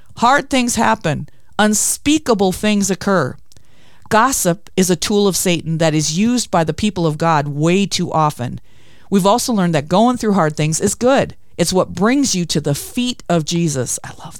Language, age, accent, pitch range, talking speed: English, 40-59, American, 160-215 Hz, 185 wpm